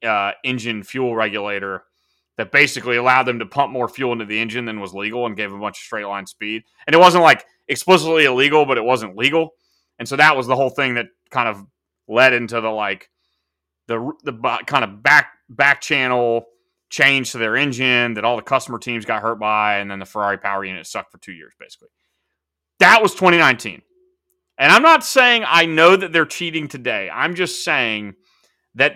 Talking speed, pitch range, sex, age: 205 wpm, 110-160 Hz, male, 30-49